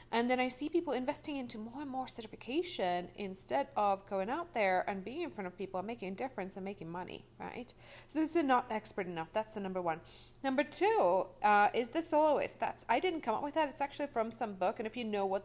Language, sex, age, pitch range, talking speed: English, female, 30-49, 185-255 Hz, 245 wpm